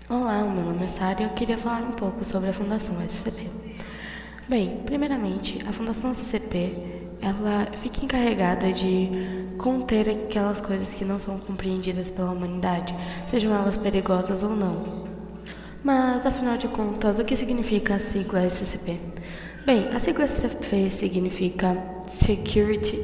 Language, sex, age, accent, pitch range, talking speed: Portuguese, female, 10-29, Brazilian, 185-220 Hz, 140 wpm